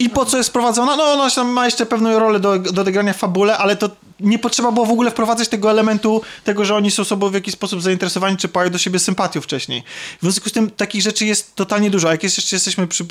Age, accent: 20-39, native